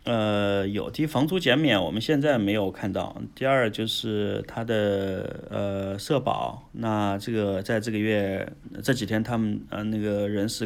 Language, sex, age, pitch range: Chinese, male, 30-49, 105-140 Hz